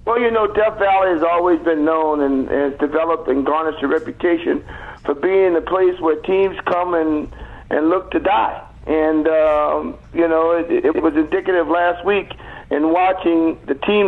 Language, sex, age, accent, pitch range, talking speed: English, male, 50-69, American, 155-200 Hz, 180 wpm